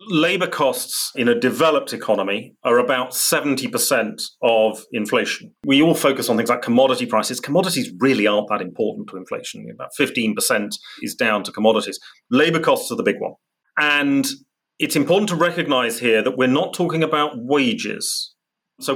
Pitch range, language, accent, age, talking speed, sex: 130-185 Hz, English, British, 40-59, 160 wpm, male